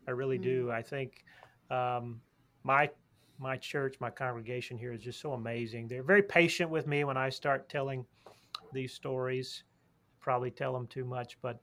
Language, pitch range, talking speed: English, 125-155 Hz, 170 wpm